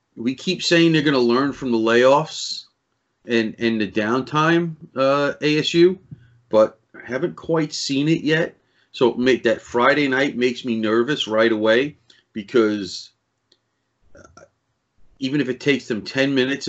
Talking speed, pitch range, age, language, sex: 145 wpm, 115-135 Hz, 30-49, English, male